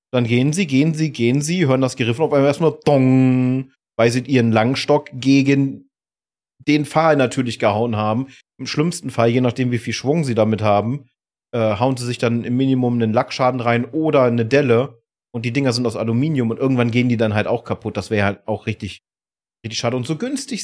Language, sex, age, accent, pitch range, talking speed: German, male, 30-49, German, 115-140 Hz, 210 wpm